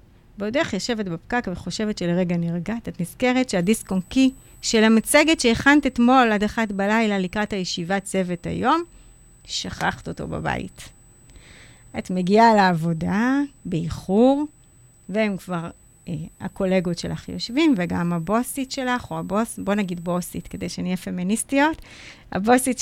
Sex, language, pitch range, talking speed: female, Hebrew, 180-230 Hz, 120 wpm